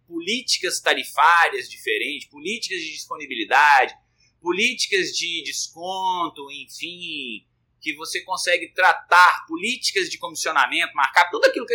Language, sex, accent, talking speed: Portuguese, male, Brazilian, 105 wpm